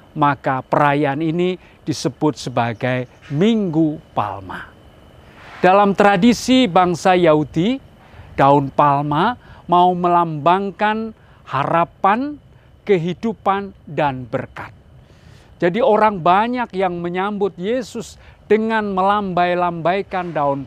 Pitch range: 145-205 Hz